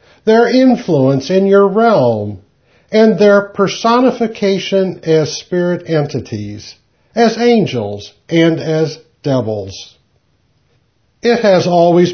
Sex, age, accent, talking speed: male, 60-79, American, 95 wpm